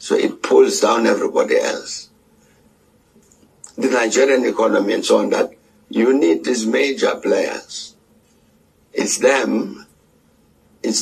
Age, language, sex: 60-79, English, male